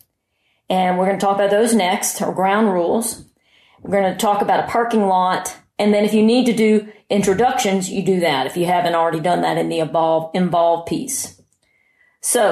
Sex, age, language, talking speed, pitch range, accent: female, 40-59, English, 195 wpm, 180-215 Hz, American